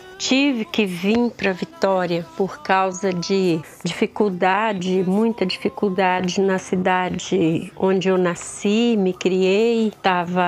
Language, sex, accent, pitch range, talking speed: Portuguese, female, Brazilian, 190-230 Hz, 110 wpm